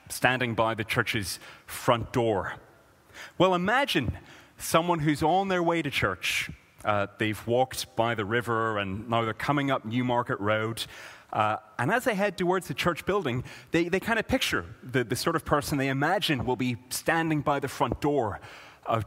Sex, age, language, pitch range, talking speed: male, 30-49, English, 115-150 Hz, 175 wpm